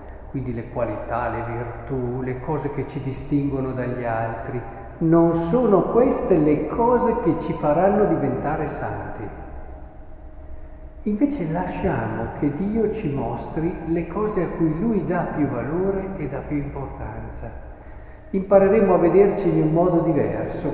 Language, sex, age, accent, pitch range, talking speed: Italian, male, 50-69, native, 125-170 Hz, 135 wpm